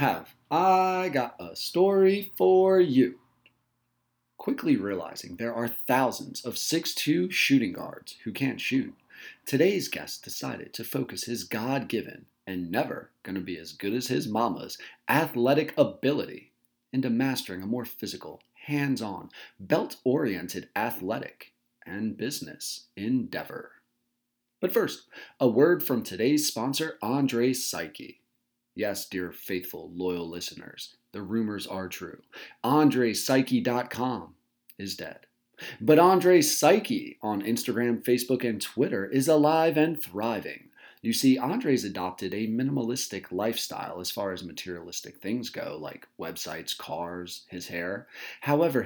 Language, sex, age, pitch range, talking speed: English, male, 30-49, 105-155 Hz, 125 wpm